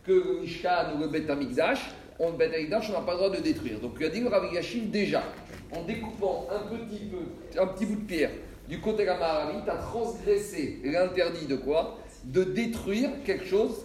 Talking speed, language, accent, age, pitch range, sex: 185 wpm, French, French, 40-59, 165-225 Hz, male